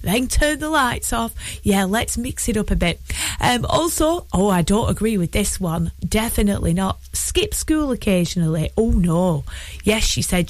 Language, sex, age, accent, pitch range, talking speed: English, female, 20-39, British, 175-245 Hz, 175 wpm